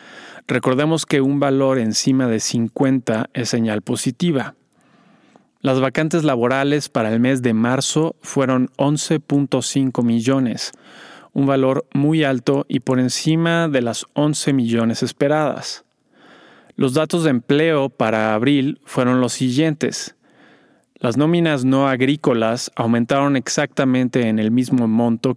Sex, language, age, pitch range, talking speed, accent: male, Spanish, 30-49, 120-145 Hz, 125 wpm, Mexican